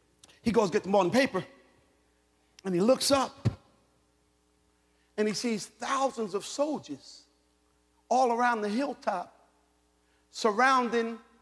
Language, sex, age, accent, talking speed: English, male, 50-69, American, 115 wpm